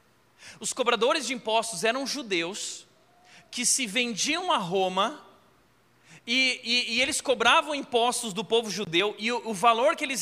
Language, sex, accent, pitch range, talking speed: Portuguese, male, Brazilian, 195-255 Hz, 155 wpm